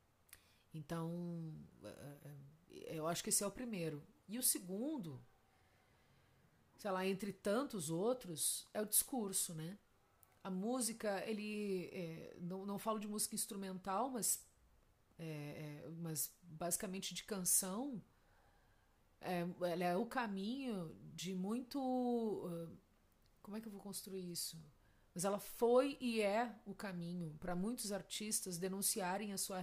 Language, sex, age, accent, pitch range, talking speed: Portuguese, female, 40-59, Brazilian, 165-210 Hz, 130 wpm